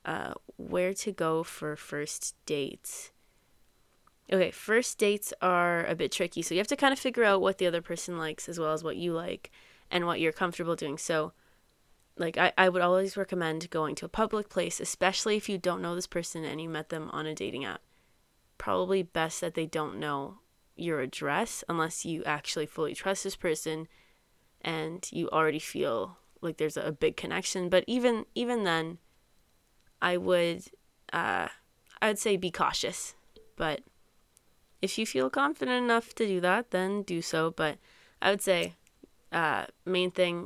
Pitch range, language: 160-190 Hz, English